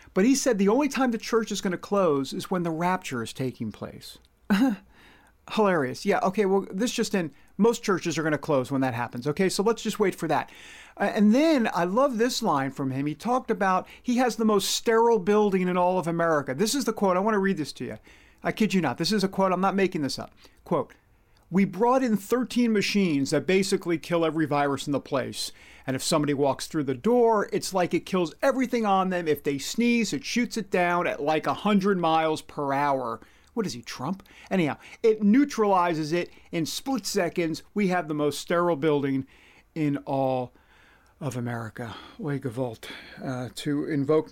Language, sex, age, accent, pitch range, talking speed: English, male, 50-69, American, 145-210 Hz, 210 wpm